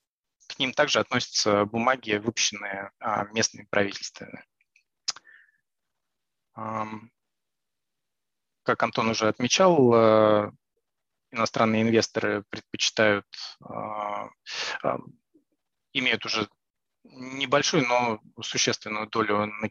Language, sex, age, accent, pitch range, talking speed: Russian, male, 20-39, native, 105-125 Hz, 65 wpm